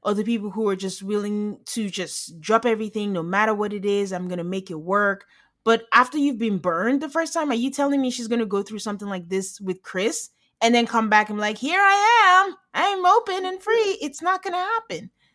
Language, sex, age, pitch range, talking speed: English, female, 20-39, 195-265 Hz, 230 wpm